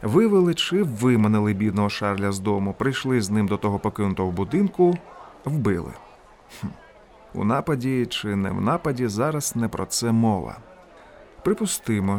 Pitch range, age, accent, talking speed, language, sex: 105-130 Hz, 30-49, native, 140 wpm, Ukrainian, male